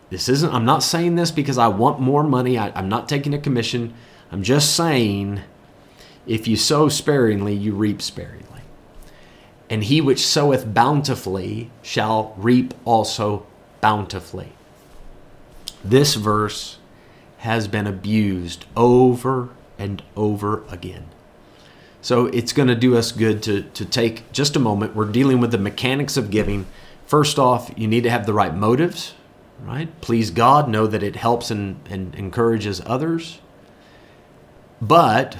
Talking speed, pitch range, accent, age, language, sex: 145 wpm, 105-145 Hz, American, 30-49, English, male